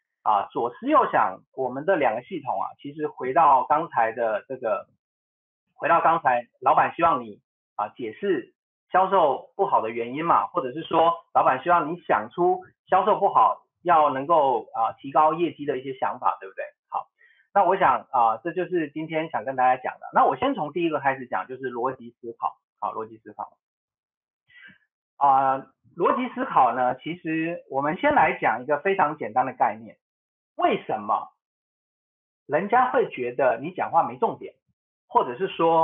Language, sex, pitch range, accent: Chinese, male, 140-225 Hz, native